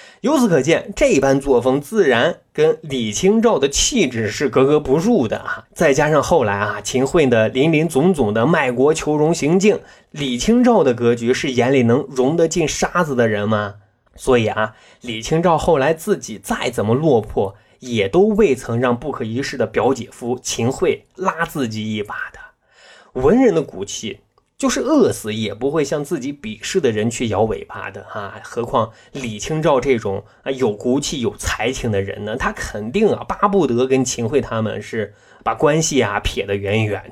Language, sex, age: Chinese, male, 20-39